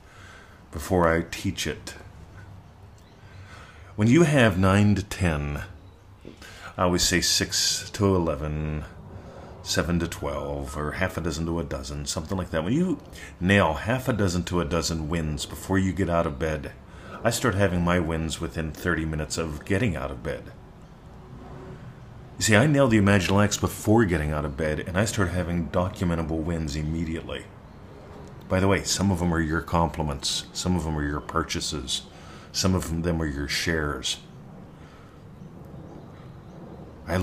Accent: American